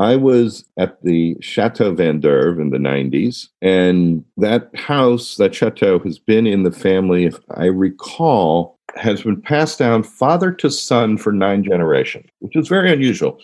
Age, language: 50-69, English